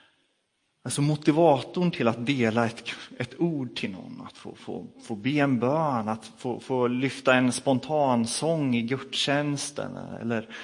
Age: 30-49